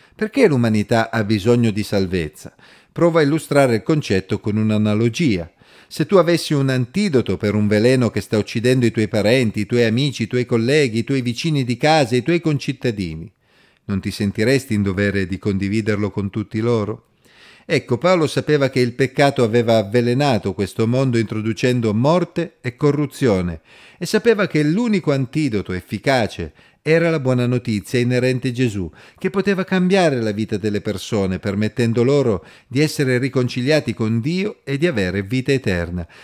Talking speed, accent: 160 wpm, native